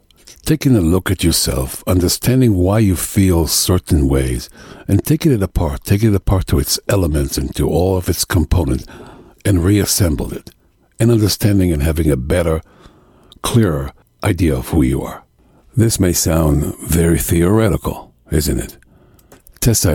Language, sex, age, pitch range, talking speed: English, male, 60-79, 75-100 Hz, 150 wpm